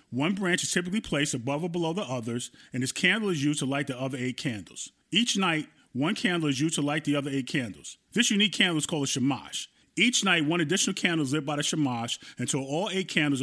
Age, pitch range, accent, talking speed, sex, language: 30-49, 130-180 Hz, American, 240 wpm, male, English